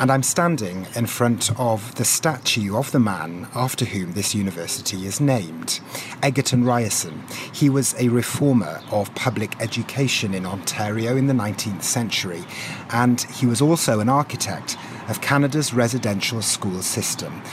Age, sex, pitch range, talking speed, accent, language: 40-59, male, 105-135 Hz, 145 wpm, British, English